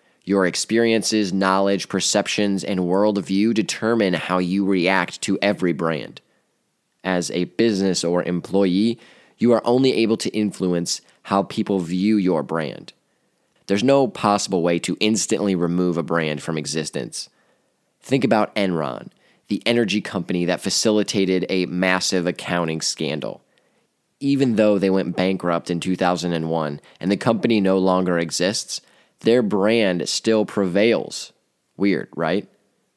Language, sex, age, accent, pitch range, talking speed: English, male, 20-39, American, 90-110 Hz, 130 wpm